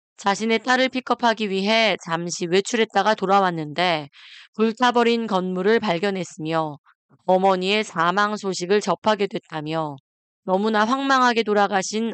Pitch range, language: 175-225 Hz, Korean